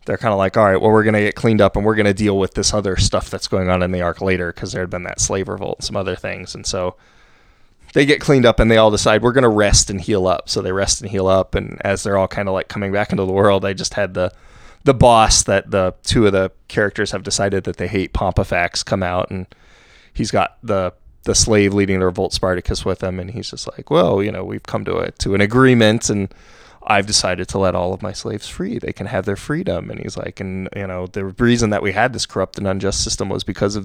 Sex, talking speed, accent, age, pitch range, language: male, 275 wpm, American, 20-39, 95-110 Hz, English